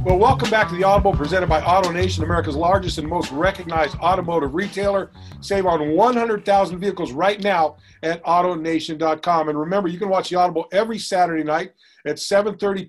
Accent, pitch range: American, 160-185 Hz